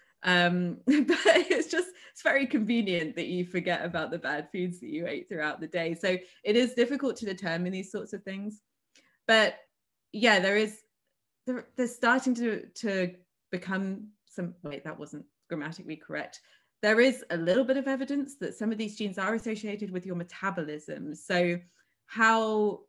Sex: female